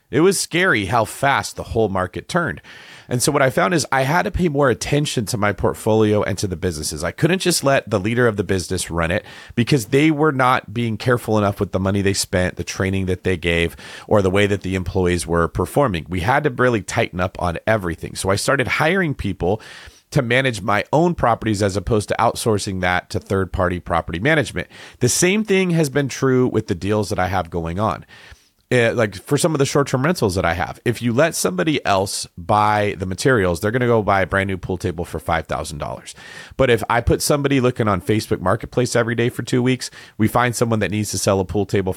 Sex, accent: male, American